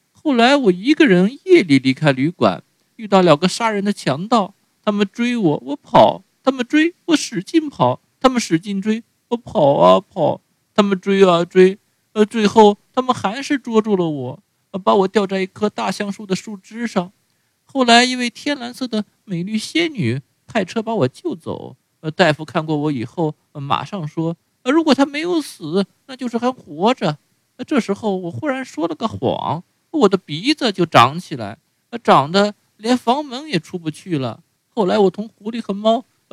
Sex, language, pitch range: male, Chinese, 175-240 Hz